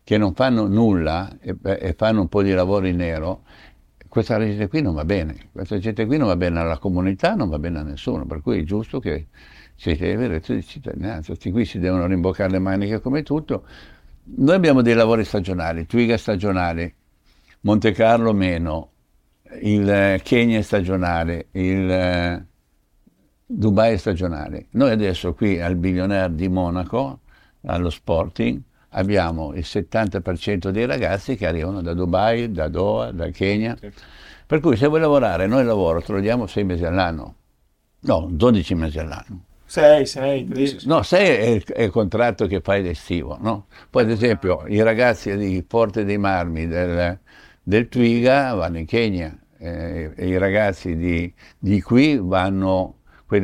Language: Italian